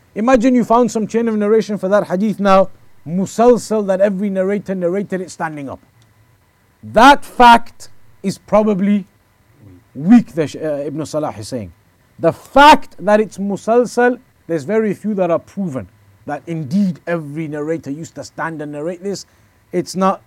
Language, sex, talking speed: English, male, 155 wpm